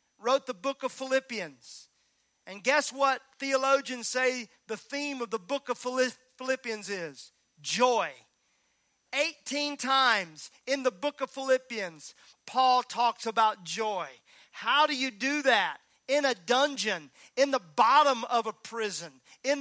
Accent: American